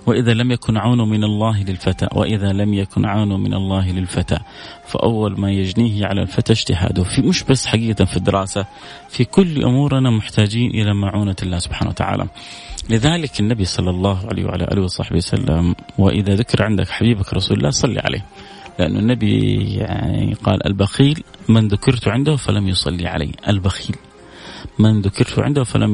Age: 30-49